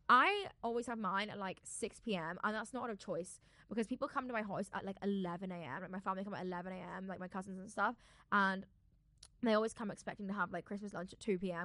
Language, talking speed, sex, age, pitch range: English, 245 wpm, female, 10-29, 185-225 Hz